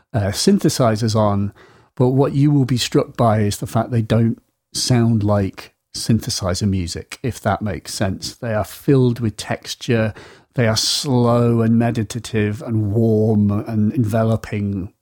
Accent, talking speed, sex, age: British, 150 wpm, male, 40-59